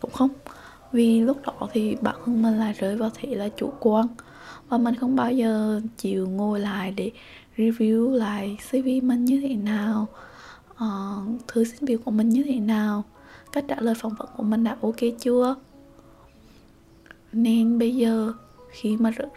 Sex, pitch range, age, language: female, 210-240 Hz, 20-39, Vietnamese